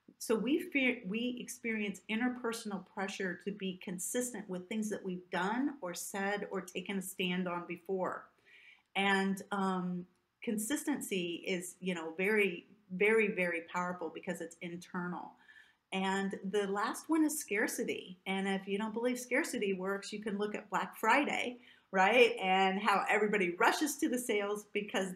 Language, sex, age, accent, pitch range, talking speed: English, female, 40-59, American, 185-225 Hz, 155 wpm